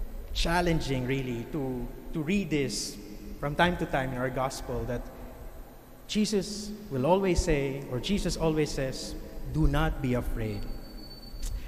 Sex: male